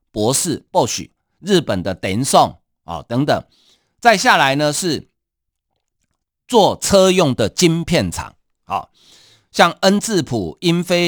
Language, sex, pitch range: Chinese, male, 125-175 Hz